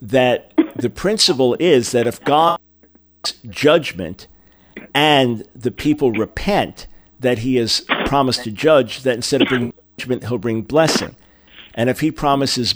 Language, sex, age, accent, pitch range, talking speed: English, male, 50-69, American, 115-140 Hz, 140 wpm